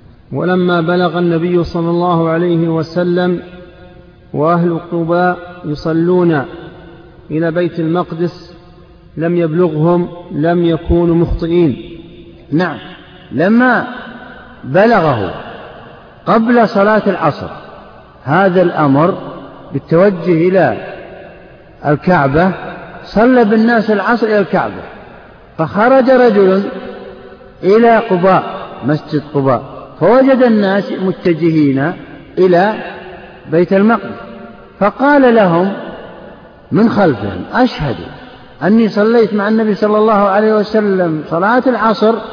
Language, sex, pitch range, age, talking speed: Arabic, male, 170-215 Hz, 50-69, 85 wpm